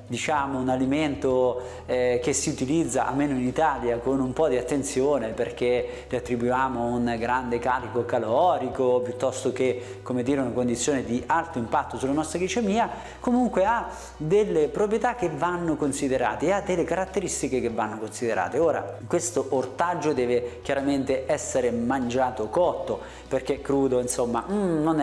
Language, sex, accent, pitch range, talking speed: Italian, male, native, 125-160 Hz, 145 wpm